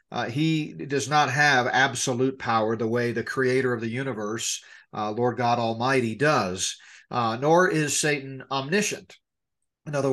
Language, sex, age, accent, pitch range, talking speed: English, male, 50-69, American, 120-150 Hz, 155 wpm